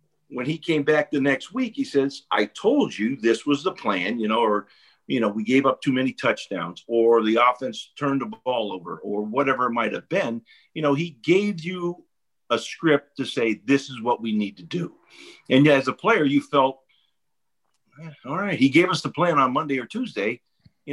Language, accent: English, American